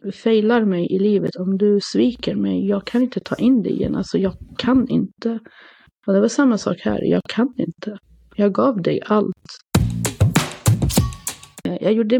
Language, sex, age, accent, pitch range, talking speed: Swedish, female, 30-49, native, 190-235 Hz, 165 wpm